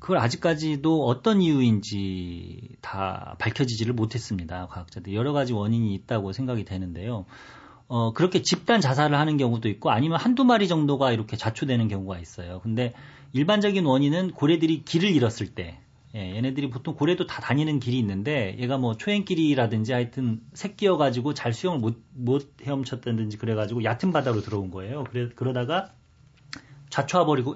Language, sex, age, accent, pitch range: Korean, male, 40-59, native, 105-145 Hz